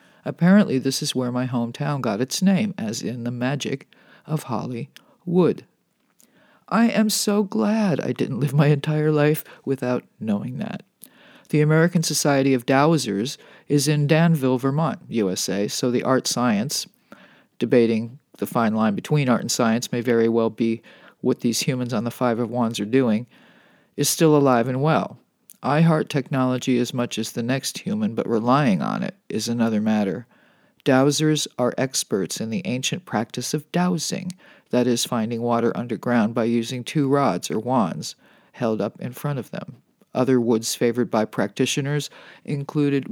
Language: English